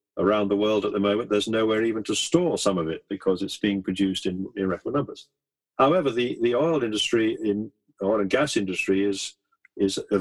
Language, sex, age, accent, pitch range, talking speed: English, male, 50-69, British, 100-125 Hz, 205 wpm